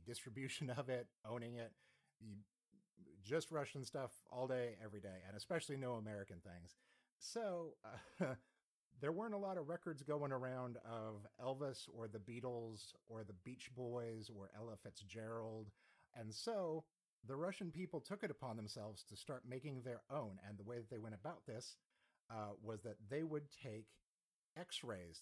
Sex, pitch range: male, 110-140 Hz